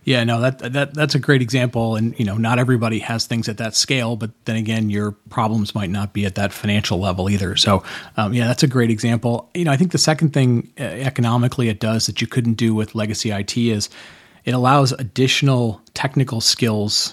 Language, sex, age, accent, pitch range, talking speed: English, male, 30-49, American, 105-120 Hz, 215 wpm